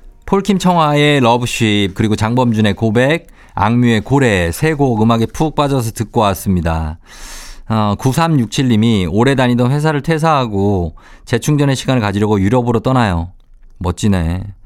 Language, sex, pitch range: Korean, male, 100-135 Hz